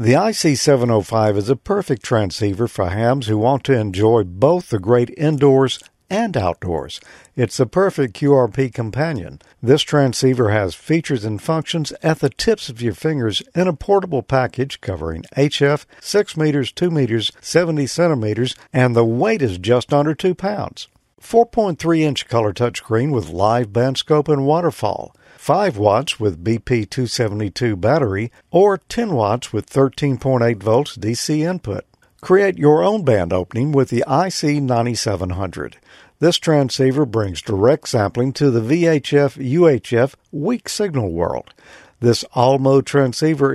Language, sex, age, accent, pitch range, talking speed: English, male, 50-69, American, 115-155 Hz, 140 wpm